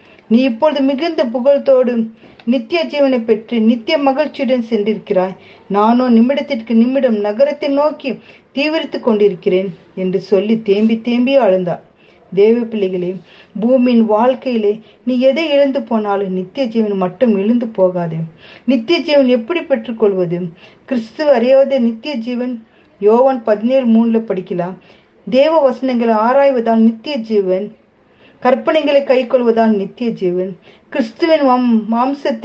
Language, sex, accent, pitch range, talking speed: Tamil, female, native, 200-270 Hz, 105 wpm